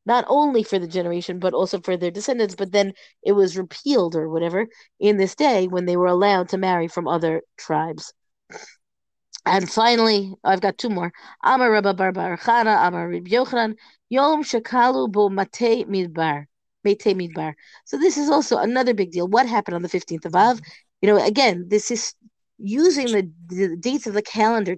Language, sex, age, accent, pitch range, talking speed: English, female, 40-59, American, 180-235 Hz, 150 wpm